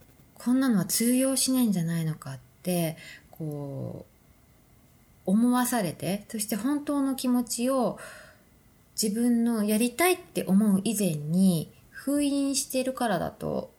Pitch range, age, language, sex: 165-230 Hz, 20-39, Japanese, female